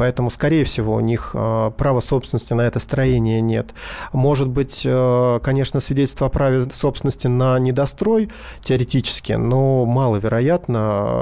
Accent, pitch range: native, 115-140 Hz